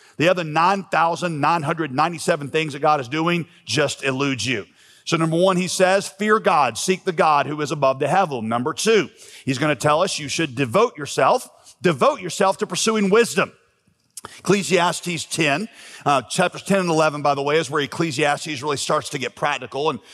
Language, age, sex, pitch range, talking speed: English, 40-59, male, 150-190 Hz, 180 wpm